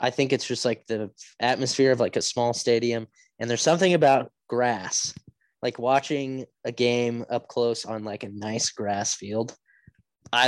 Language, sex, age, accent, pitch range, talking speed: English, male, 20-39, American, 105-135 Hz, 170 wpm